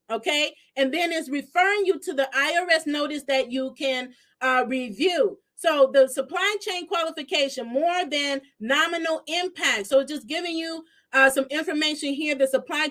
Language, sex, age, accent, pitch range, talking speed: English, female, 40-59, American, 275-345 Hz, 160 wpm